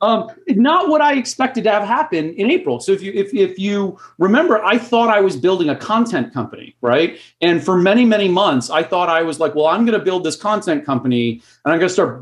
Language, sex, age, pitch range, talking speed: English, male, 40-59, 150-205 Hz, 240 wpm